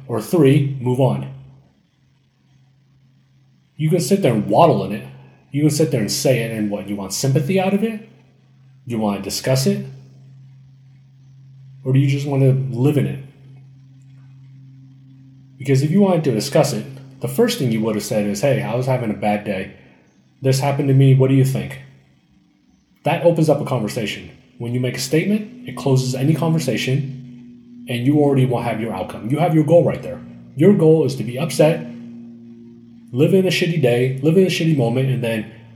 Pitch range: 115-140 Hz